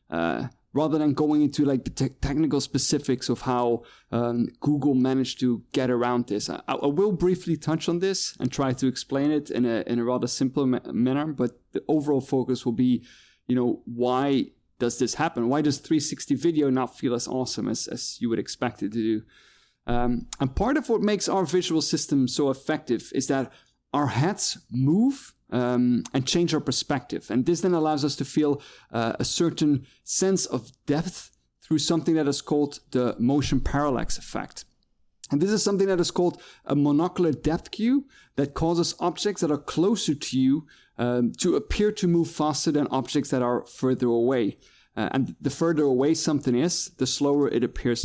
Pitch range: 125-160 Hz